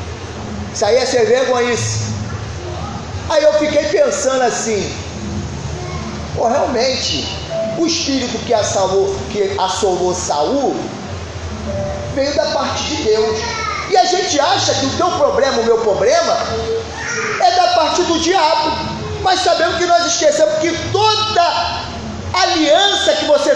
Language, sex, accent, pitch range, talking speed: Portuguese, male, Brazilian, 285-370 Hz, 135 wpm